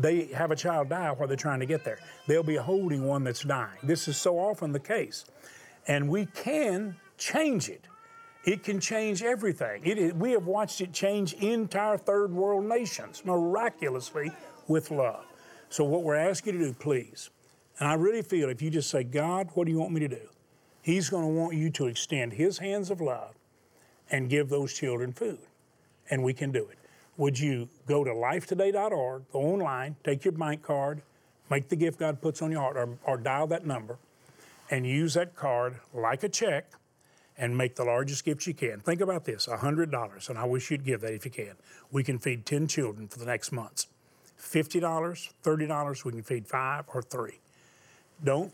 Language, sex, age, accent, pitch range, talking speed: English, male, 40-59, American, 135-180 Hz, 195 wpm